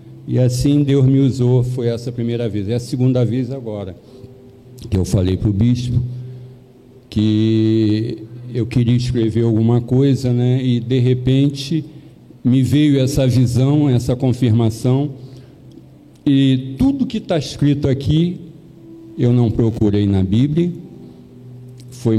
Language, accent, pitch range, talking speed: Portuguese, Brazilian, 110-130 Hz, 130 wpm